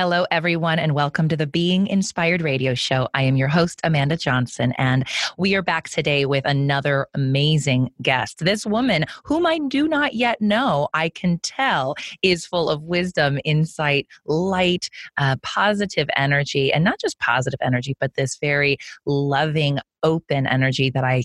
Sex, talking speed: female, 165 wpm